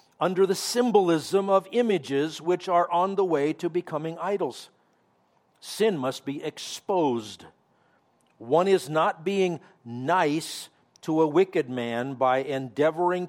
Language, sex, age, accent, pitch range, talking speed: English, male, 50-69, American, 130-180 Hz, 125 wpm